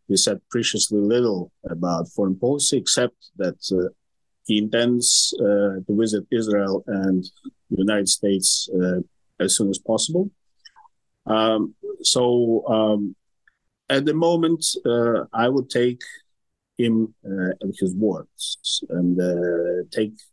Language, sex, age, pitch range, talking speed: English, male, 50-69, 95-120 Hz, 125 wpm